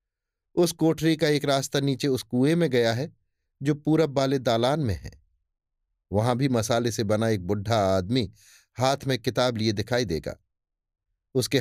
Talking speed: 165 wpm